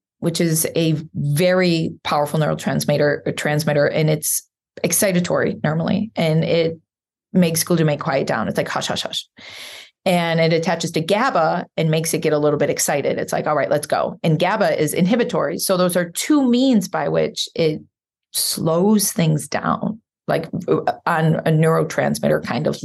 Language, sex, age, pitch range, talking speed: English, female, 20-39, 160-210 Hz, 165 wpm